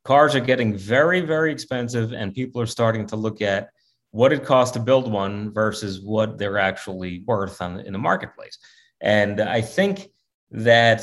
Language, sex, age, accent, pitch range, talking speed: English, male, 30-49, American, 105-130 Hz, 175 wpm